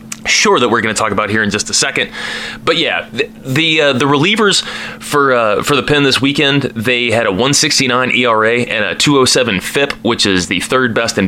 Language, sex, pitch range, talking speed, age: English, male, 115-140 Hz, 220 wpm, 20-39